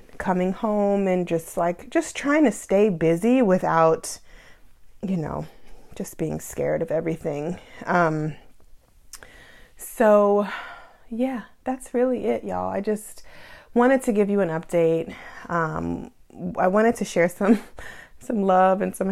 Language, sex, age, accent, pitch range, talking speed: English, female, 30-49, American, 175-220 Hz, 135 wpm